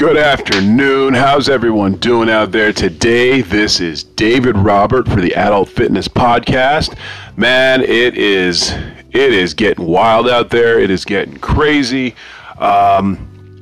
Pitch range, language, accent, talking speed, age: 95-110 Hz, English, American, 135 wpm, 30-49